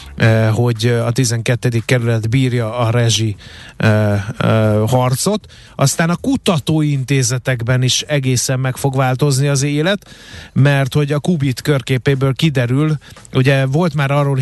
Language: Hungarian